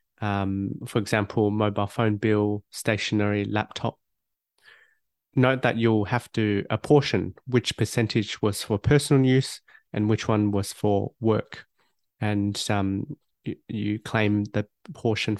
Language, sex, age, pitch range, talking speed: English, male, 30-49, 105-120 Hz, 125 wpm